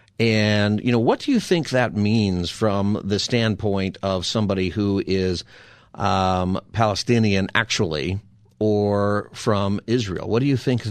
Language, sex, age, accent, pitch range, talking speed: English, male, 50-69, American, 100-120 Hz, 145 wpm